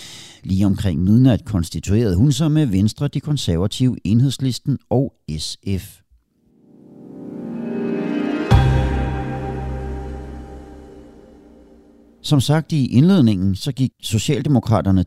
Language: Danish